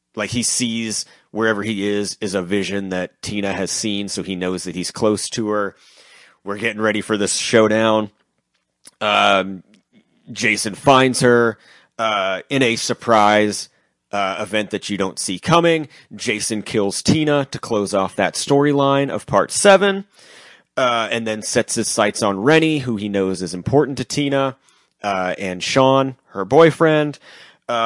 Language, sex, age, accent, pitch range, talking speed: English, male, 30-49, American, 100-130 Hz, 160 wpm